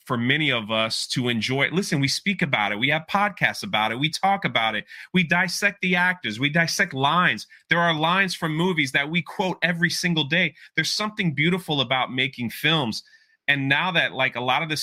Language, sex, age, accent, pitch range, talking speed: English, male, 30-49, American, 130-180 Hz, 210 wpm